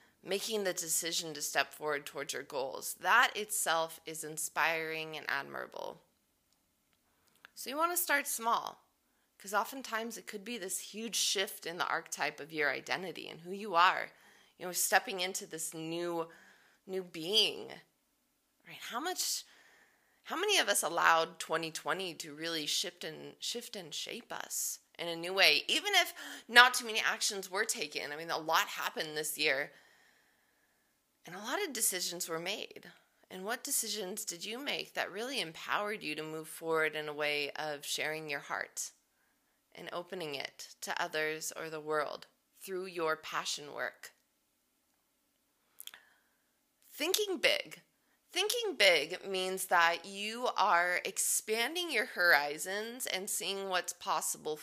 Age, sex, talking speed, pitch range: 20-39, female, 150 wpm, 160-220 Hz